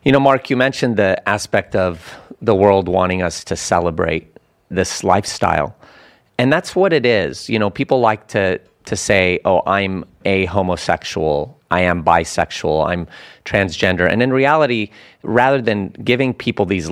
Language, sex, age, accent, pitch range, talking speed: English, male, 30-49, American, 90-115 Hz, 160 wpm